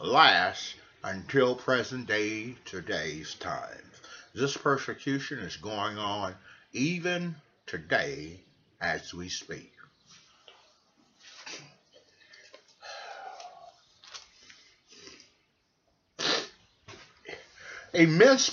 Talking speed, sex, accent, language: 55 wpm, male, American, English